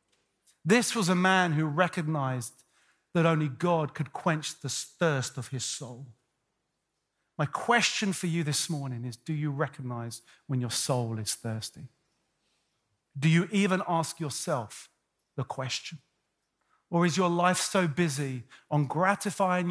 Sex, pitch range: male, 130-190 Hz